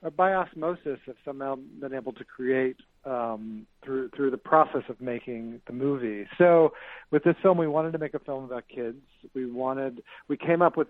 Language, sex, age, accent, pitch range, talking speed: English, male, 50-69, American, 125-150 Hz, 195 wpm